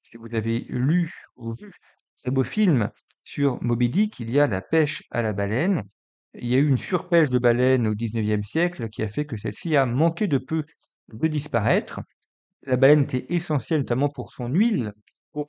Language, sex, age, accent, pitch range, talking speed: French, male, 50-69, French, 115-150 Hz, 200 wpm